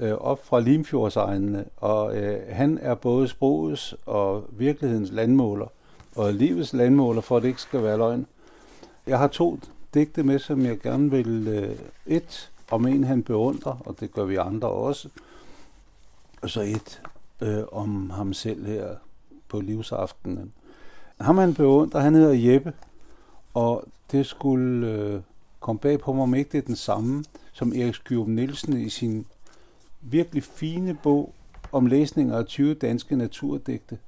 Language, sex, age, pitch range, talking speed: Danish, male, 60-79, 110-140 Hz, 155 wpm